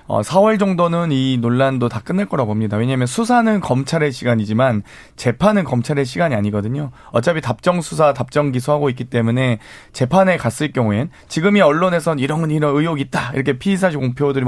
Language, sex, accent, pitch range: Korean, male, native, 120-165 Hz